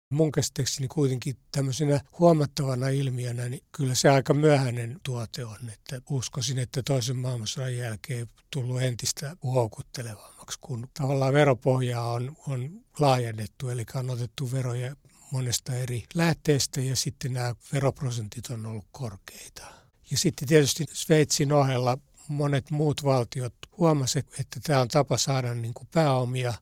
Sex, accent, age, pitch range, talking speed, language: male, native, 60-79, 120-145 Hz, 130 wpm, Finnish